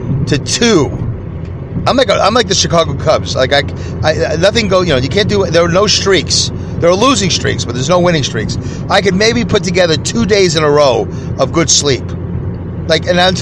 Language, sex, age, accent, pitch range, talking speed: English, male, 40-59, American, 125-180 Hz, 215 wpm